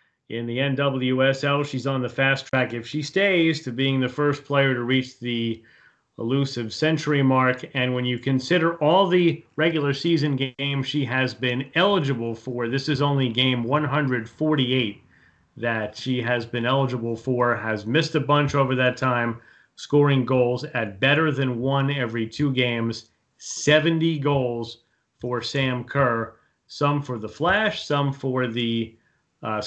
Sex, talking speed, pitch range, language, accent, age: male, 155 wpm, 120-145 Hz, English, American, 30-49